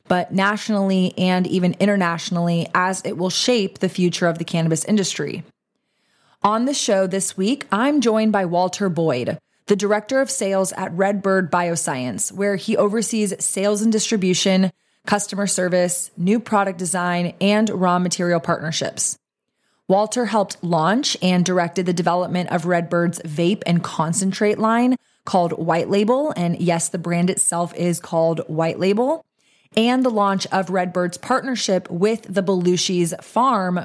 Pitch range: 175-205 Hz